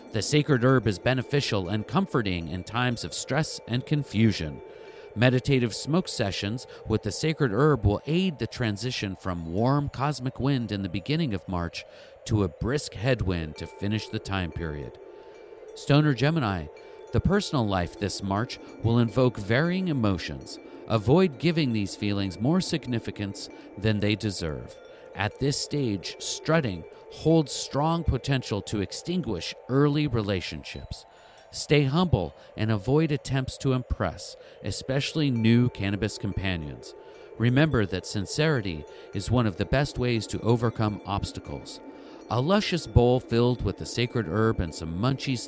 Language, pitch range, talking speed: English, 100-140 Hz, 140 wpm